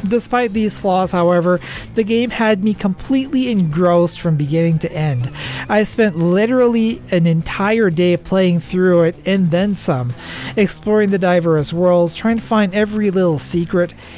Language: English